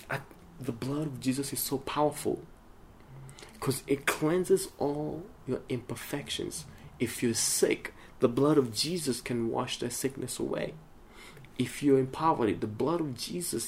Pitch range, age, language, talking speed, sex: 110-140 Hz, 30-49, English, 145 wpm, male